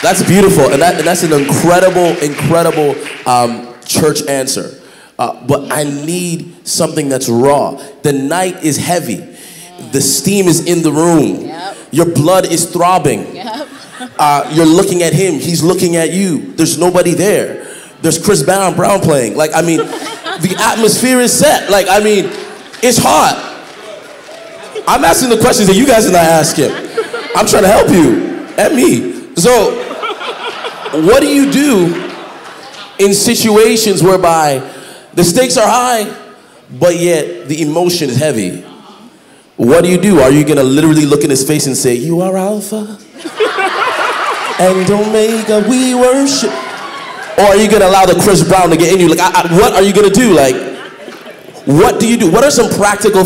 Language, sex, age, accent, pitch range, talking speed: English, male, 20-39, American, 155-210 Hz, 160 wpm